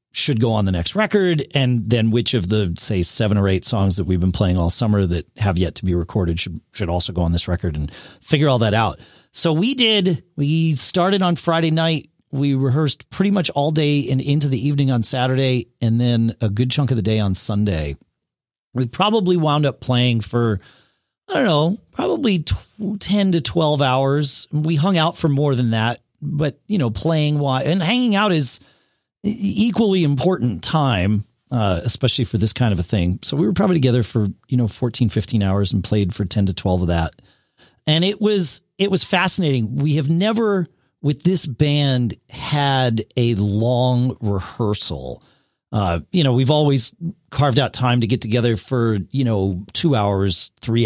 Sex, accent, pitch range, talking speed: male, American, 105-155 Hz, 195 wpm